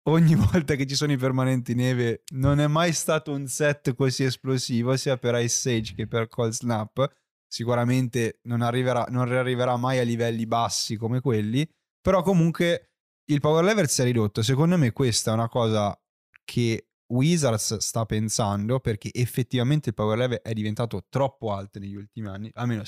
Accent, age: native, 10-29